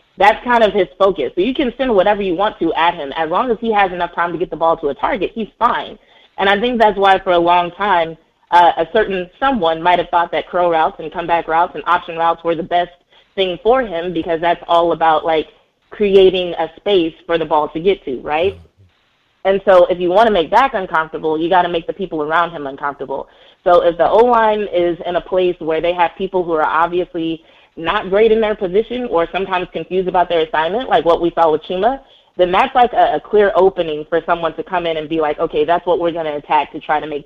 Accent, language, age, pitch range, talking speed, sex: American, English, 20-39, 160-195 Hz, 250 wpm, female